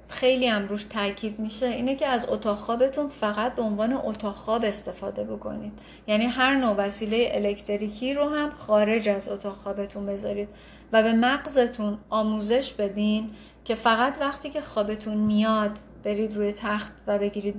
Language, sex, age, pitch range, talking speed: Persian, female, 40-59, 205-235 Hz, 150 wpm